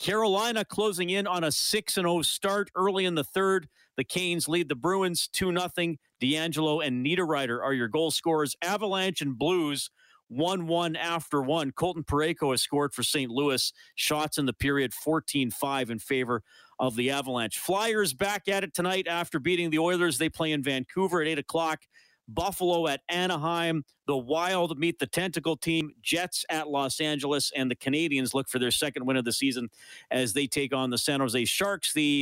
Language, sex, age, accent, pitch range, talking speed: English, male, 40-59, American, 135-180 Hz, 180 wpm